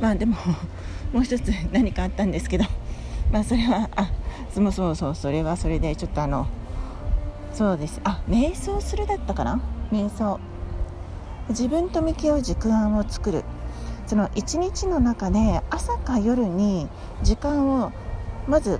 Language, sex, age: Japanese, female, 40-59